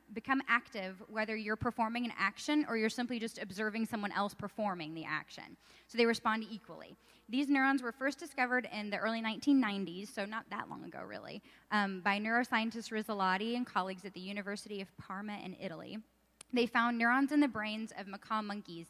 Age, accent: 10-29, American